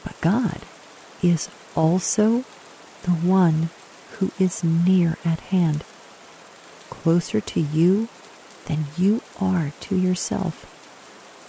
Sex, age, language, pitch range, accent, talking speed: female, 40-59, English, 150-180 Hz, American, 100 wpm